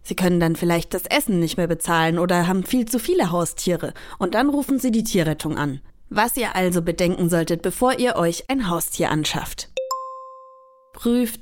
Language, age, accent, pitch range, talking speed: German, 30-49, German, 170-245 Hz, 180 wpm